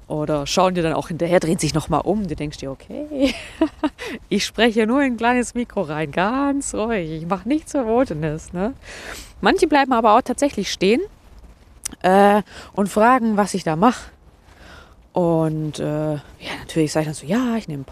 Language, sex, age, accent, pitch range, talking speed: German, female, 20-39, German, 145-230 Hz, 185 wpm